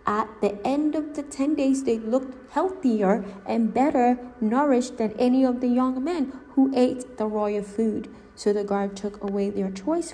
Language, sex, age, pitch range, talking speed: English, female, 20-39, 205-255 Hz, 185 wpm